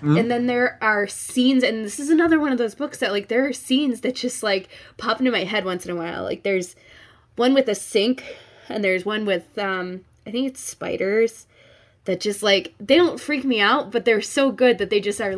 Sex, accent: female, American